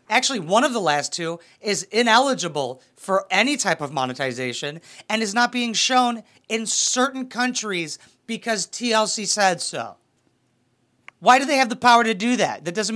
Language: English